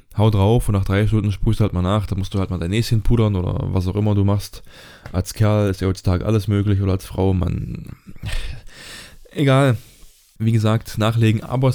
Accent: German